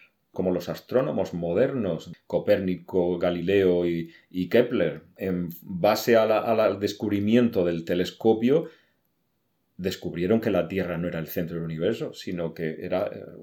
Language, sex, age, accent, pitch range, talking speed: Spanish, male, 30-49, Spanish, 85-105 Hz, 120 wpm